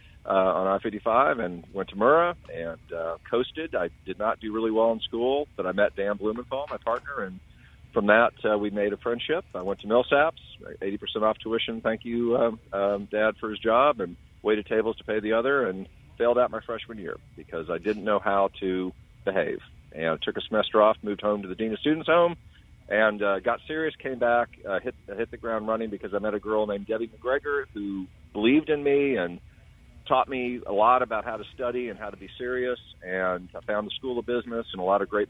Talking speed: 225 wpm